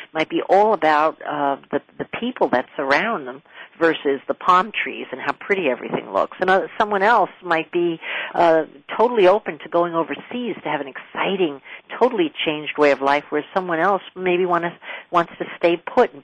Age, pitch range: 50-69, 155-200 Hz